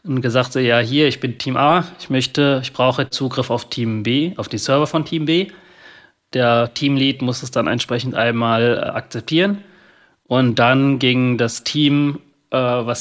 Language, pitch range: German, 115-140 Hz